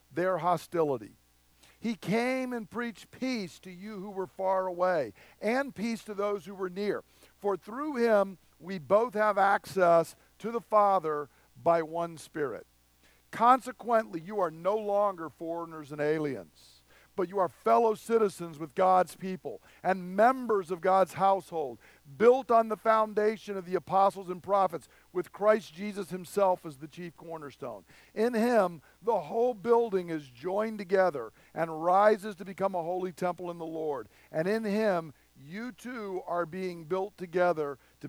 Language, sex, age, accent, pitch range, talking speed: English, male, 50-69, American, 140-205 Hz, 155 wpm